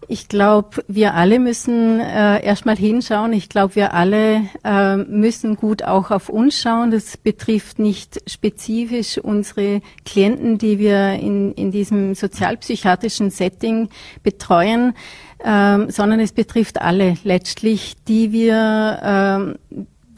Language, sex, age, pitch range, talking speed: German, female, 30-49, 205-230 Hz, 125 wpm